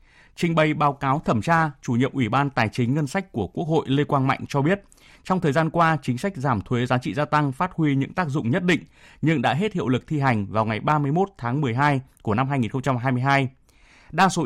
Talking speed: 240 wpm